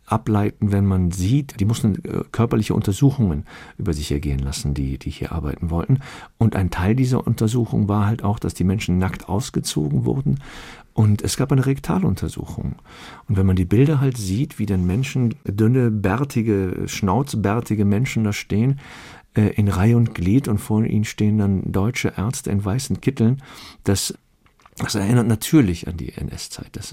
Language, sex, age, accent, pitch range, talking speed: German, male, 50-69, German, 90-115 Hz, 170 wpm